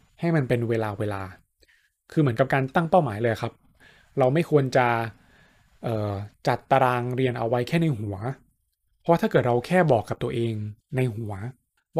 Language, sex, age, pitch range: Thai, male, 20-39, 115-150 Hz